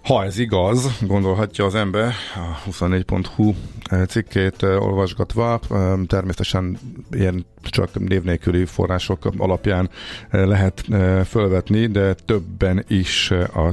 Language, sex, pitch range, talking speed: Hungarian, male, 90-105 Hz, 95 wpm